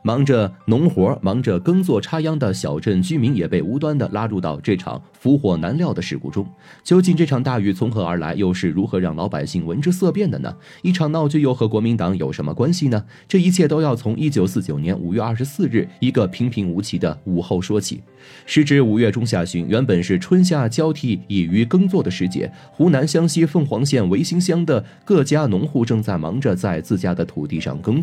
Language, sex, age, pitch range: Chinese, male, 30-49, 100-155 Hz